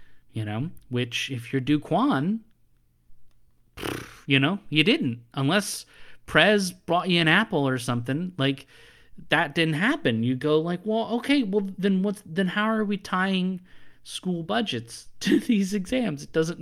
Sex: male